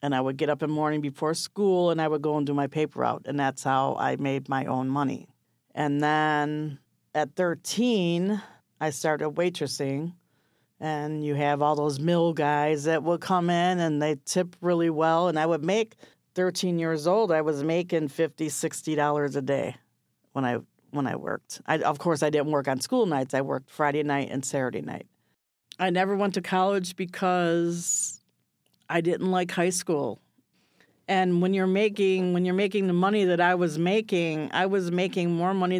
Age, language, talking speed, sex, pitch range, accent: 50-69, English, 190 wpm, female, 150-185 Hz, American